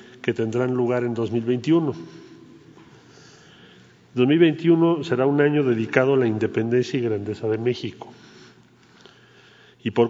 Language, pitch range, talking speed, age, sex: Spanish, 115-135 Hz, 115 wpm, 40-59, male